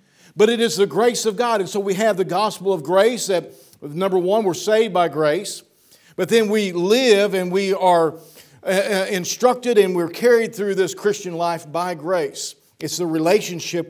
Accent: American